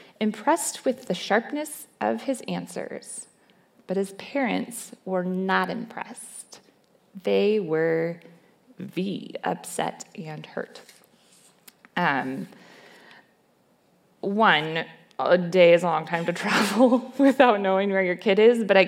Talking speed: 120 wpm